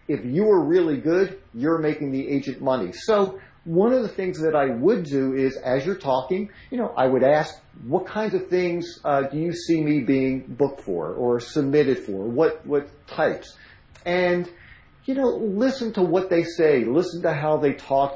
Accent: American